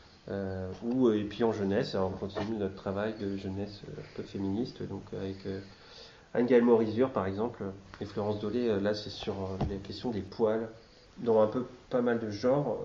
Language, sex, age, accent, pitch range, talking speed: French, male, 30-49, French, 100-115 Hz, 200 wpm